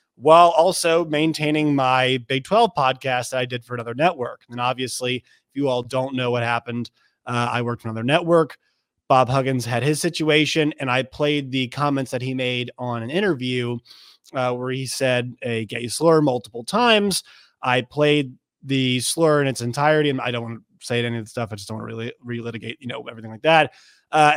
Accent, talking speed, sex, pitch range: American, 205 wpm, male, 125-150 Hz